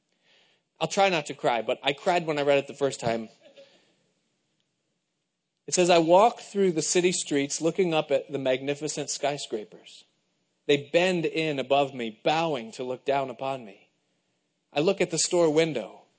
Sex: male